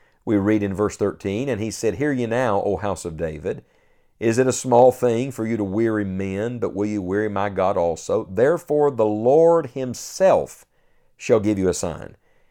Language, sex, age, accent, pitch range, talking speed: English, male, 50-69, American, 100-130 Hz, 195 wpm